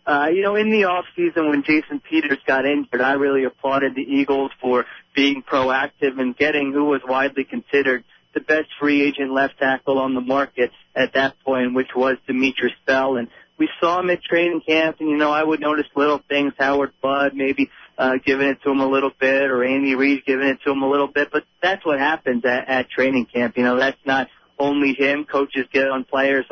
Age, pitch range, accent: 30-49, 130-145 Hz, American